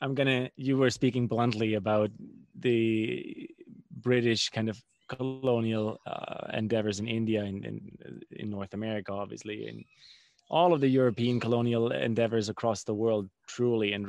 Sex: male